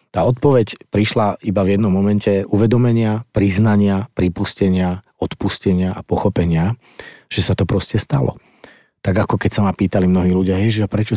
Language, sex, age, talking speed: Slovak, male, 40-59, 155 wpm